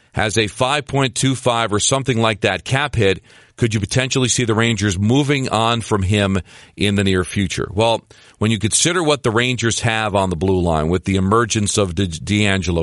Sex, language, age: male, English, 40-59